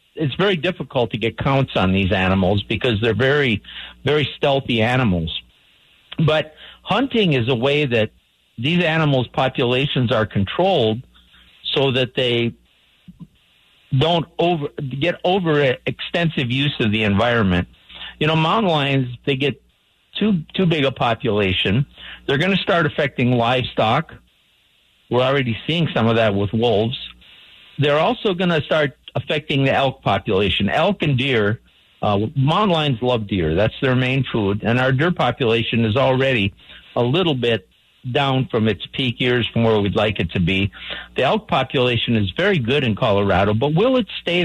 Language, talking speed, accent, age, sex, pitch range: English, 160 wpm, American, 50-69, male, 110-150 Hz